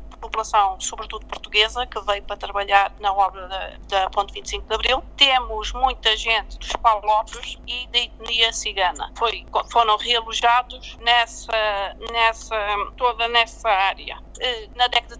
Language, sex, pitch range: Portuguese, female, 215-245 Hz